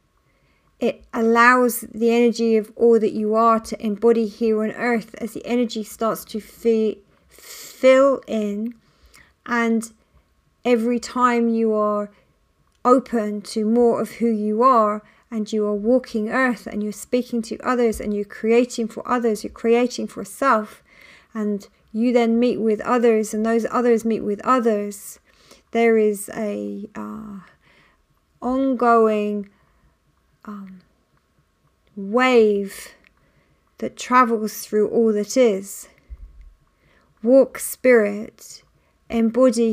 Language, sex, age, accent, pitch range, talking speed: English, female, 40-59, British, 210-240 Hz, 120 wpm